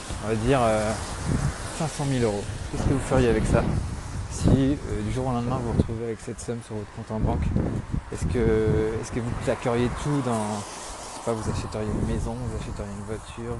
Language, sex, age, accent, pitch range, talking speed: French, male, 20-39, French, 100-115 Hz, 215 wpm